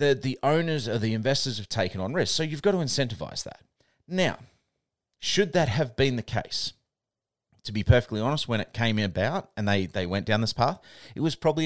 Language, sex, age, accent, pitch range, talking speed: English, male, 30-49, Australian, 90-130 Hz, 210 wpm